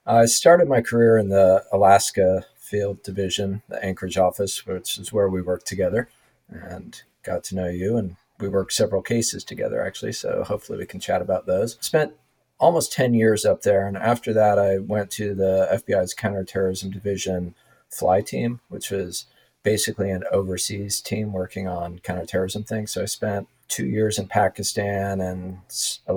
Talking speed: 170 wpm